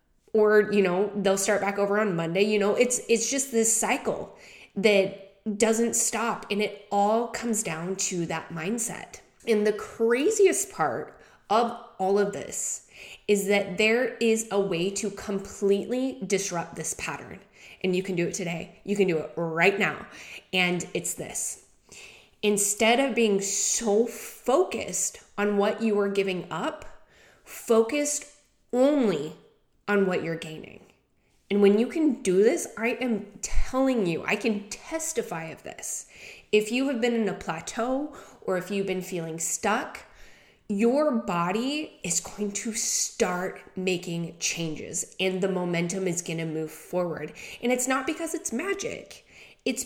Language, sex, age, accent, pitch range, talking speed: English, female, 20-39, American, 190-235 Hz, 155 wpm